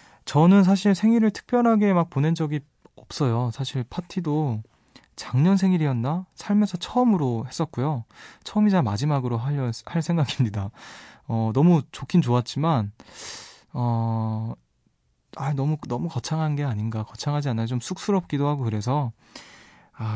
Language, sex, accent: Korean, male, native